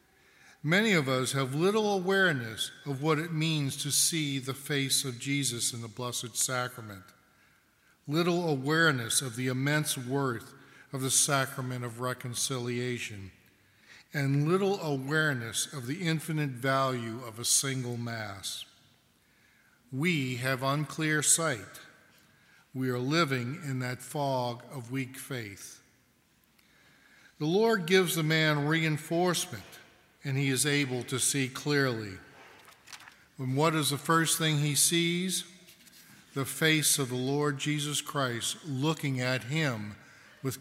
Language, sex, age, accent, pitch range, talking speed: English, male, 50-69, American, 125-155 Hz, 130 wpm